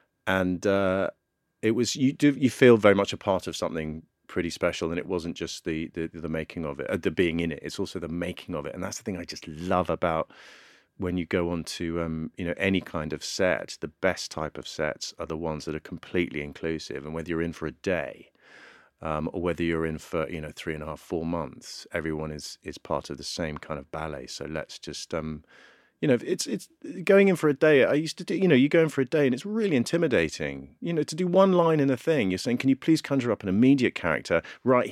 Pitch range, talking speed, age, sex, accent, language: 80-125 Hz, 255 wpm, 30-49, male, British, English